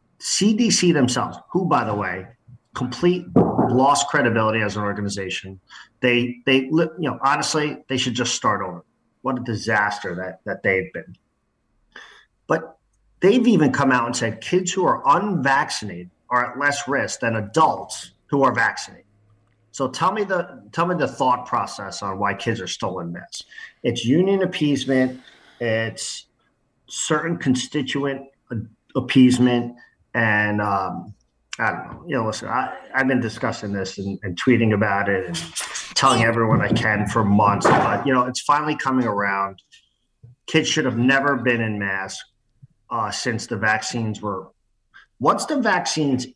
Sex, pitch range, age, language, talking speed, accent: male, 105-135 Hz, 40-59, English, 155 wpm, American